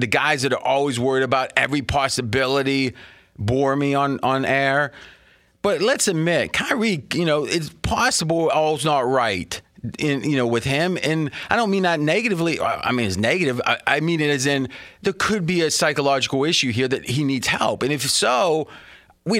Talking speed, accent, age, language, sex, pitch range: 185 wpm, American, 30-49, English, male, 135-185 Hz